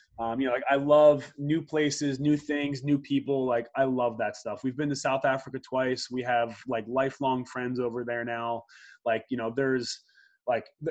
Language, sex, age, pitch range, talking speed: English, male, 20-39, 125-150 Hz, 200 wpm